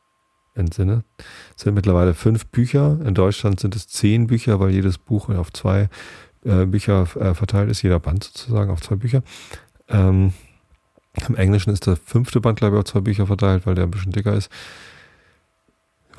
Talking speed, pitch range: 165 wpm, 85-105 Hz